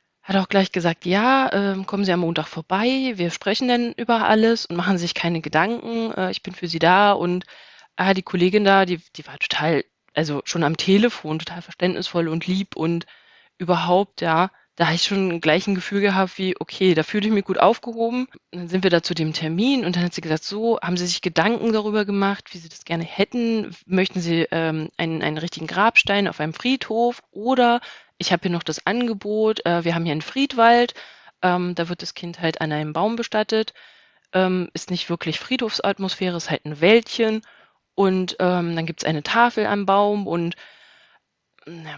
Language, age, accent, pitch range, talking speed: German, 20-39, German, 165-200 Hz, 200 wpm